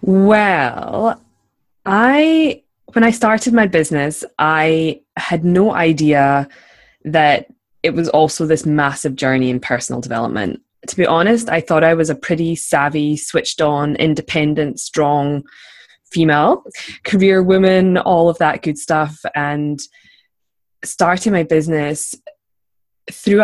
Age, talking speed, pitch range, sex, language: 20-39, 125 wpm, 145-175 Hz, female, English